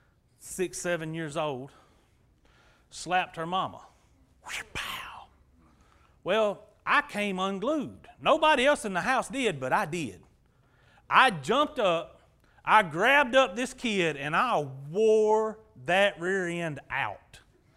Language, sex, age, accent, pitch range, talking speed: English, male, 40-59, American, 195-280 Hz, 120 wpm